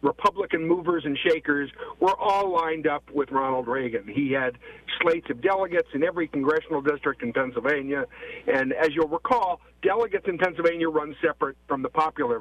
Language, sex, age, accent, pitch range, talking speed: English, male, 50-69, American, 140-175 Hz, 165 wpm